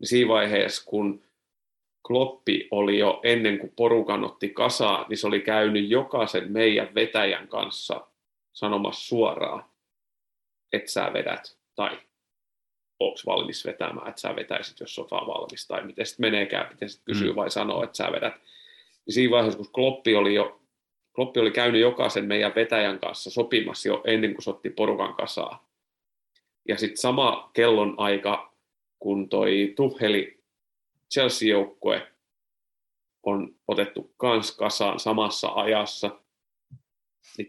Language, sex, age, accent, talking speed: Finnish, male, 30-49, native, 130 wpm